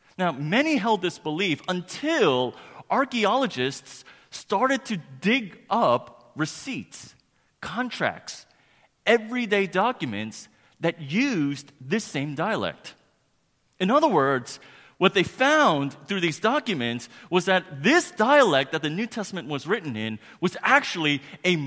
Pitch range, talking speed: 135-210 Hz, 120 wpm